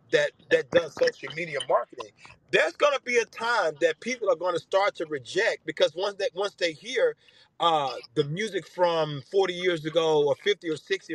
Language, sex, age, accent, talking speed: English, male, 40-59, American, 190 wpm